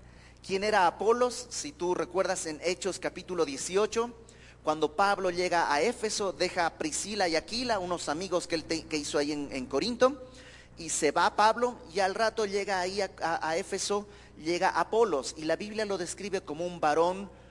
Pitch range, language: 150-200 Hz, Spanish